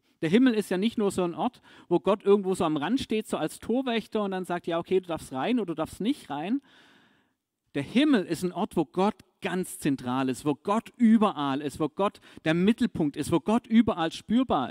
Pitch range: 150-210 Hz